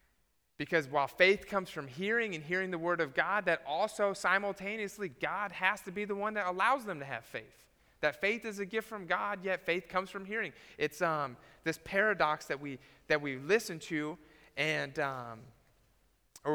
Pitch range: 140-185 Hz